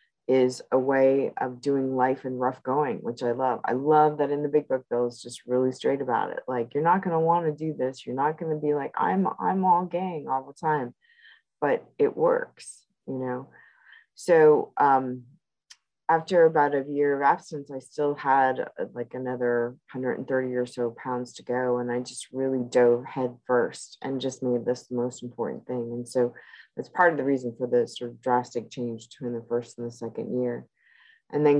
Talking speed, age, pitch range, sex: 210 wpm, 20-39, 125-150 Hz, female